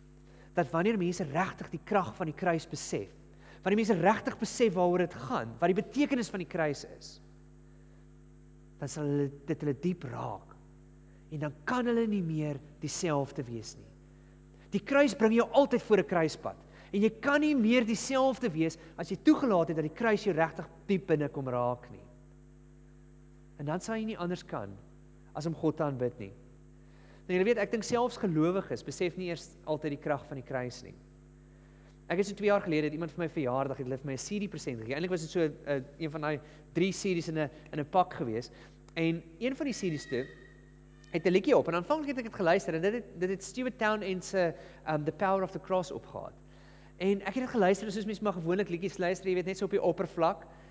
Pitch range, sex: 145-200 Hz, male